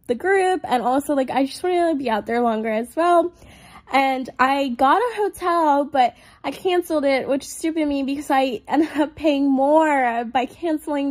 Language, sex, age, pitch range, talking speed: English, female, 10-29, 250-310 Hz, 195 wpm